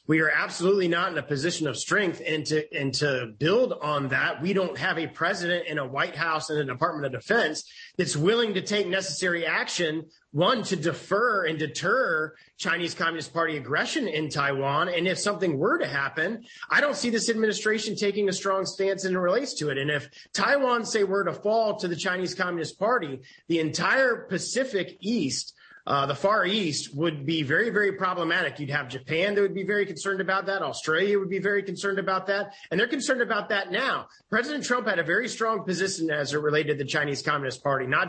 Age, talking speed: 30-49, 210 wpm